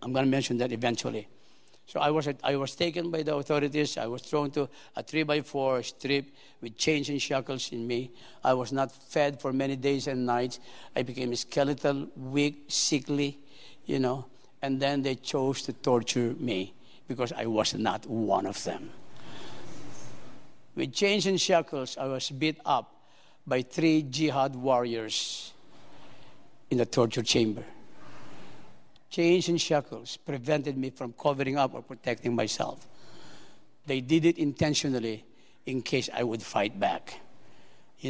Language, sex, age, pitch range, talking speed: English, male, 50-69, 125-150 Hz, 150 wpm